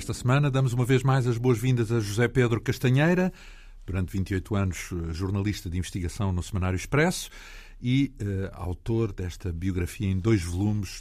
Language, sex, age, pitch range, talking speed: Portuguese, male, 50-69, 95-130 Hz, 160 wpm